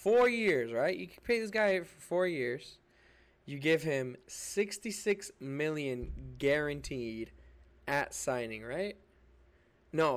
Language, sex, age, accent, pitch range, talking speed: English, male, 20-39, American, 125-185 Hz, 125 wpm